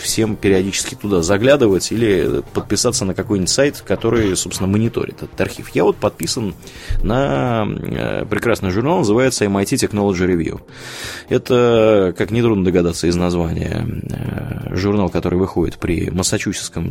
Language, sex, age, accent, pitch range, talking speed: Russian, male, 20-39, native, 90-110 Hz, 130 wpm